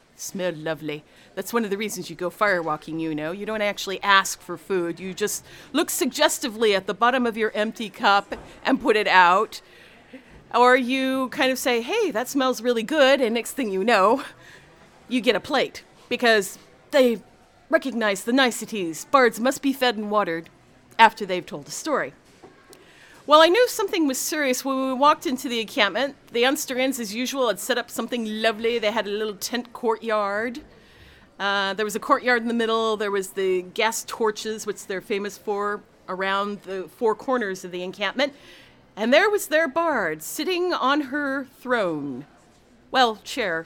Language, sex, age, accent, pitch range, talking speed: English, female, 40-59, American, 195-260 Hz, 180 wpm